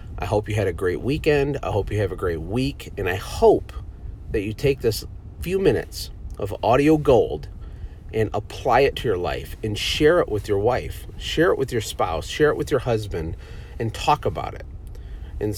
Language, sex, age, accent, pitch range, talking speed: English, male, 40-59, American, 90-120 Hz, 205 wpm